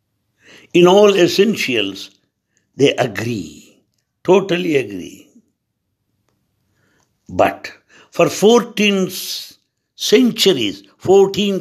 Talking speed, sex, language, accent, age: 60 wpm, male, English, Indian, 60-79